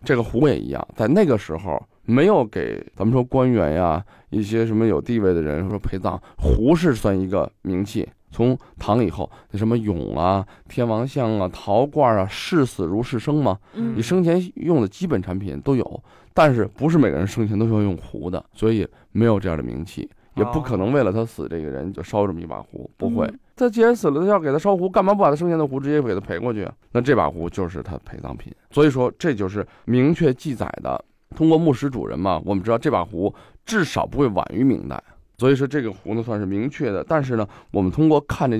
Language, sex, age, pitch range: Chinese, male, 20-39, 100-135 Hz